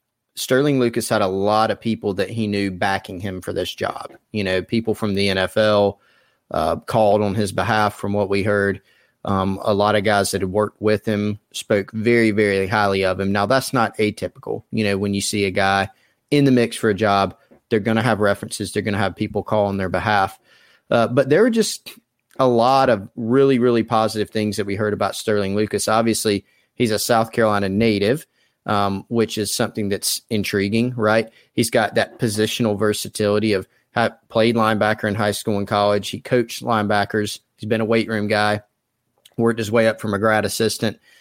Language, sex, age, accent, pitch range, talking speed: English, male, 30-49, American, 100-115 Hz, 200 wpm